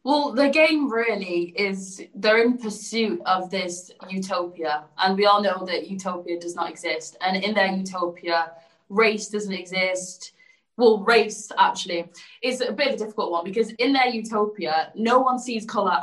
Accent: British